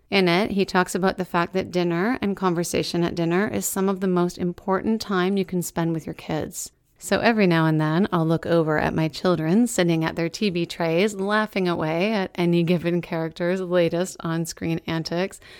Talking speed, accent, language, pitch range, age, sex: 195 wpm, American, English, 170-200 Hz, 30-49, female